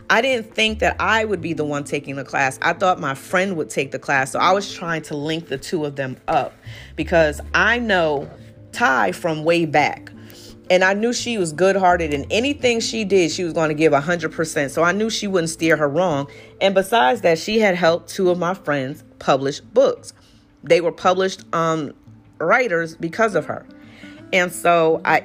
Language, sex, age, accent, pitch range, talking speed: English, female, 40-59, American, 145-190 Hz, 200 wpm